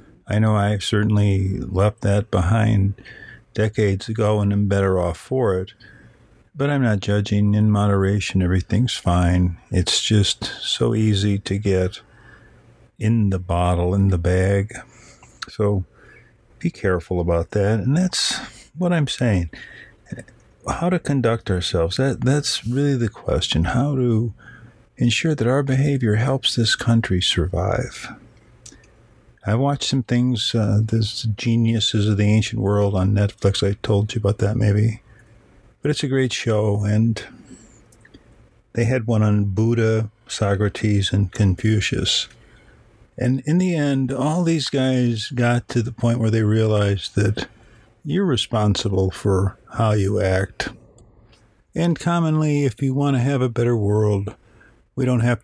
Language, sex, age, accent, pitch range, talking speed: English, male, 50-69, American, 100-125 Hz, 140 wpm